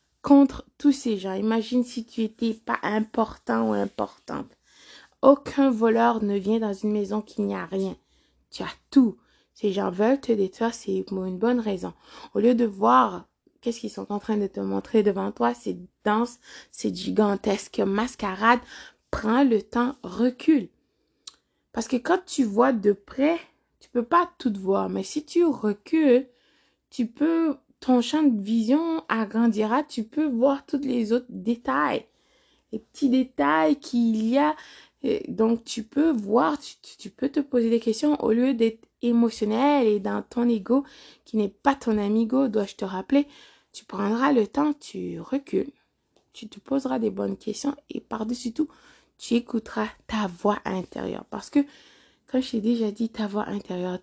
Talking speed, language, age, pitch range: 170 wpm, French, 20-39, 210-270 Hz